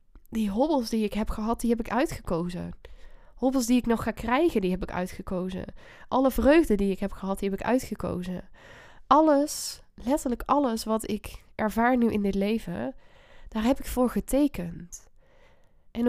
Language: Dutch